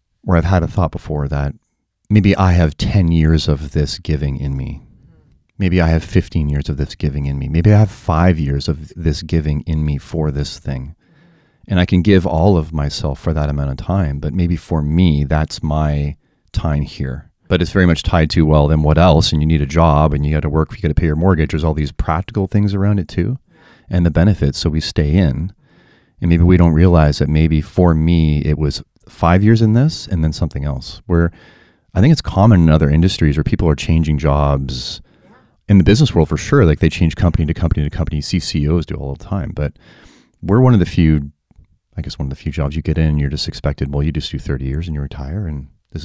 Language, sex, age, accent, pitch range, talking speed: English, male, 30-49, American, 75-95 Hz, 240 wpm